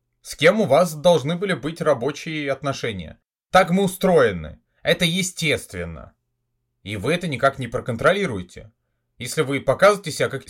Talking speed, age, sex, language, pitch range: 145 wpm, 30-49, male, Russian, 115-170 Hz